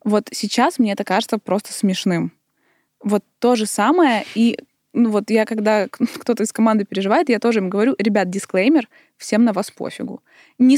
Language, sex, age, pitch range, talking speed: Russian, female, 20-39, 195-240 Hz, 175 wpm